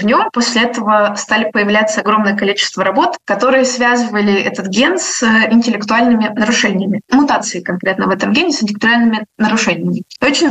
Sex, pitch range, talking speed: female, 210-255 Hz, 130 wpm